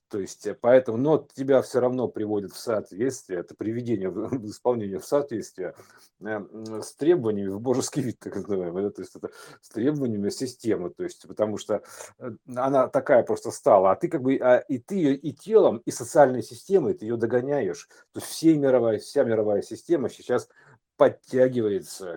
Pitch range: 105-135 Hz